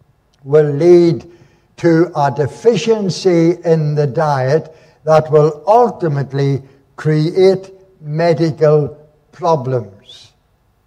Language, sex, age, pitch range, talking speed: English, male, 60-79, 125-175 Hz, 75 wpm